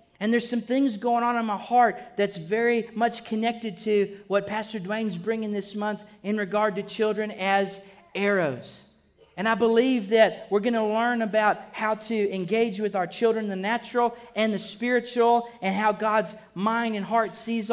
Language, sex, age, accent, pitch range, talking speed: English, male, 40-59, American, 205-235 Hz, 180 wpm